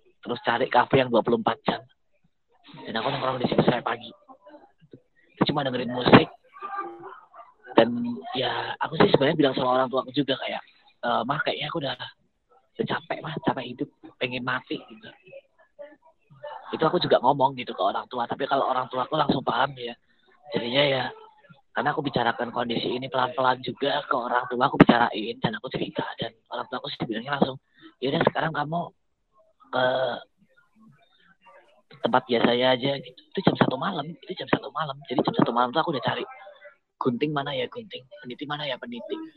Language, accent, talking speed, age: Indonesian, native, 170 wpm, 20-39